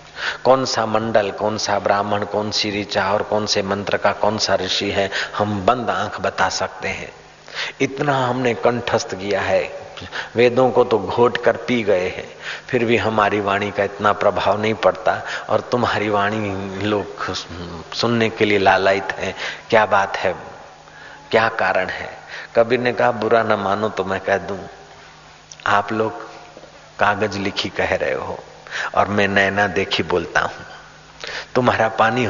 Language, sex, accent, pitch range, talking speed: Hindi, male, native, 95-110 Hz, 160 wpm